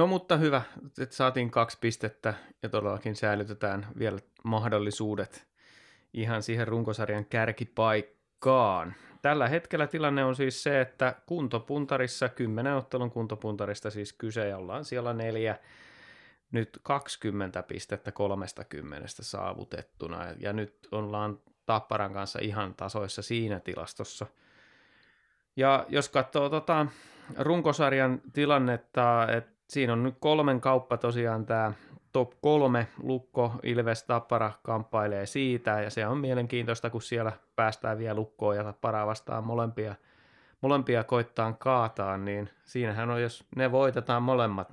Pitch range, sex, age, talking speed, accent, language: 110-135 Hz, male, 30-49, 120 wpm, native, Finnish